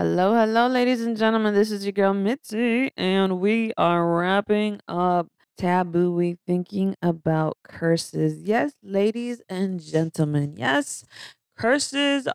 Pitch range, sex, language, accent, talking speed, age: 165-220 Hz, female, English, American, 125 wpm, 20-39